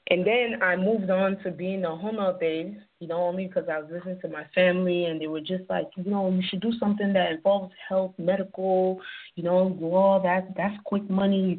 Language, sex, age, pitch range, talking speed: English, female, 20-39, 170-205 Hz, 215 wpm